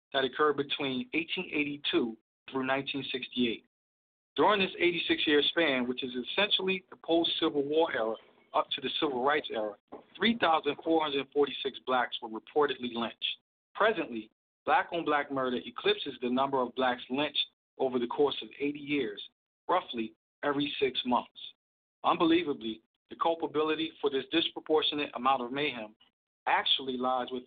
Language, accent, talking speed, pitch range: English, American, 130 wpm, 125-160 Hz